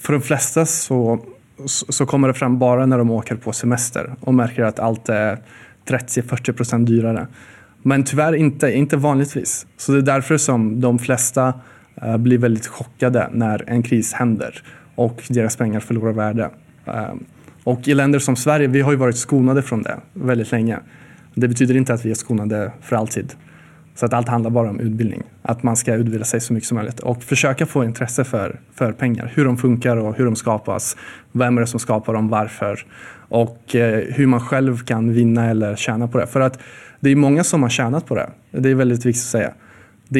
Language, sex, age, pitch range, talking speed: Swedish, male, 20-39, 115-130 Hz, 200 wpm